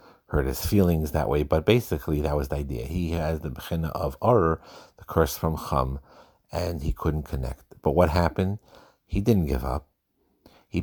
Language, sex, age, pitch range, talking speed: English, male, 50-69, 70-90 Hz, 185 wpm